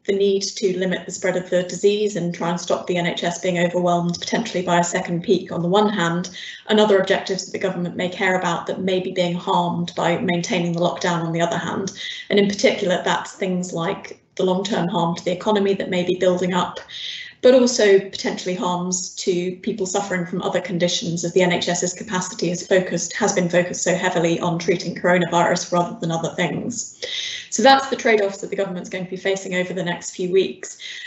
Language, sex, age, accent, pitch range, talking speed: English, female, 30-49, British, 180-210 Hz, 210 wpm